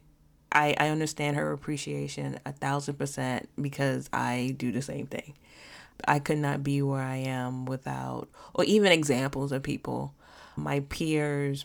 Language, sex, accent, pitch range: English, female, American, 130-145 Hz